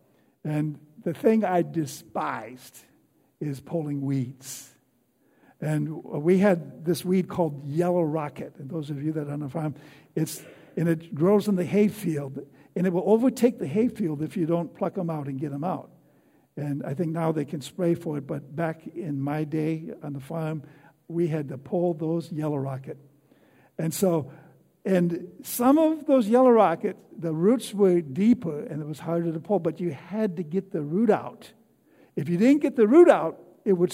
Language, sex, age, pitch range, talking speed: English, male, 60-79, 150-195 Hz, 195 wpm